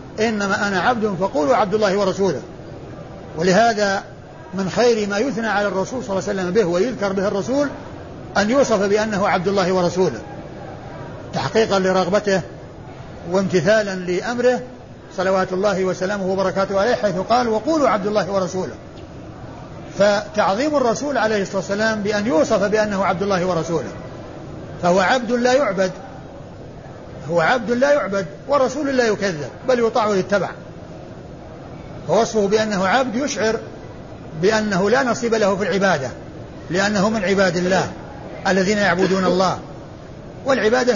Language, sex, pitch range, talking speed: Arabic, male, 185-220 Hz, 125 wpm